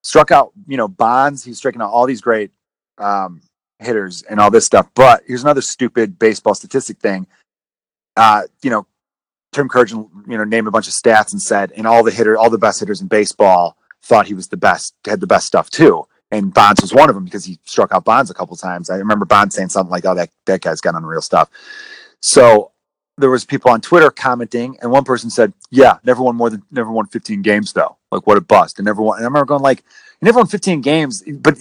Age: 30-49